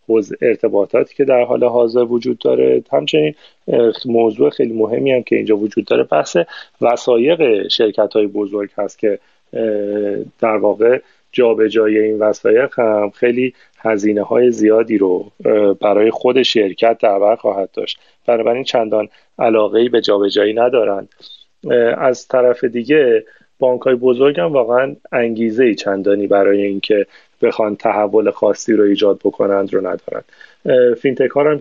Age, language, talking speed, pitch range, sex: 30-49, Persian, 130 wpm, 105-125 Hz, male